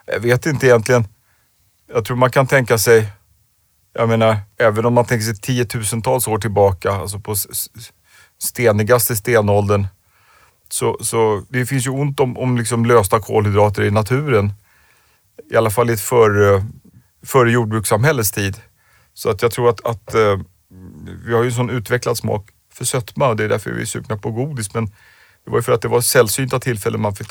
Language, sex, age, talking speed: Swedish, male, 30-49, 175 wpm